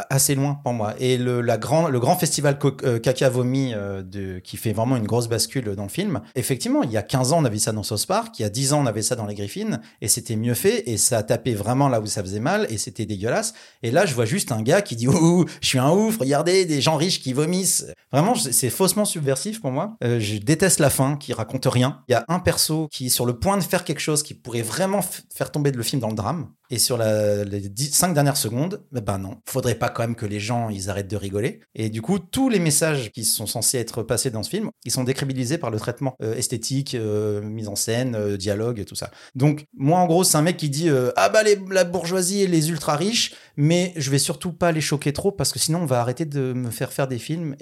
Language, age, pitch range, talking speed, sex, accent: French, 30-49, 115-155 Hz, 275 wpm, male, French